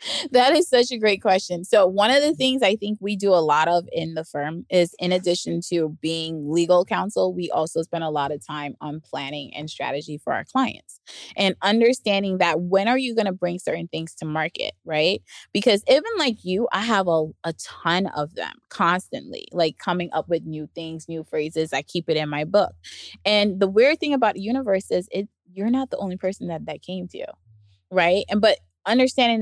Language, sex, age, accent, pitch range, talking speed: English, female, 20-39, American, 160-200 Hz, 210 wpm